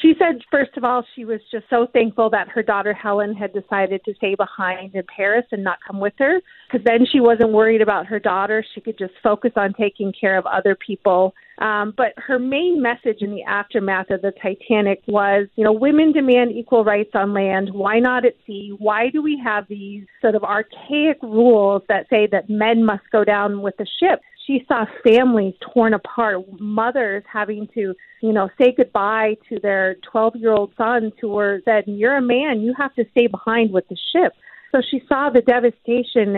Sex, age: female, 40-59